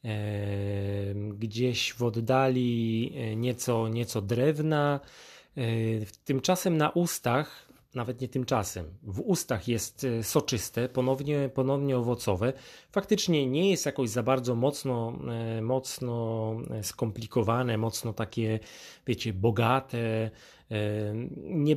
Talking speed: 90 wpm